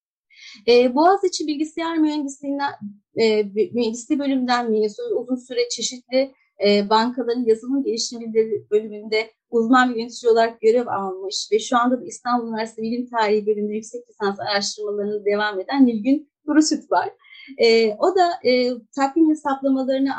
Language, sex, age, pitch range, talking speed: Turkish, female, 30-49, 215-280 Hz, 130 wpm